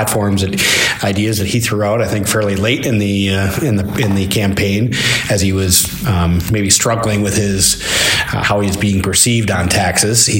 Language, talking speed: English, 195 wpm